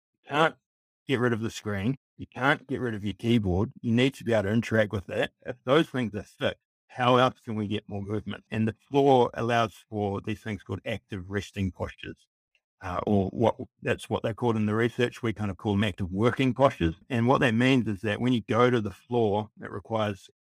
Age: 50-69